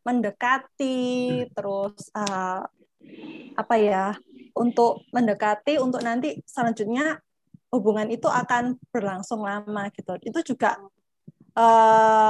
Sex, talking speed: female, 95 wpm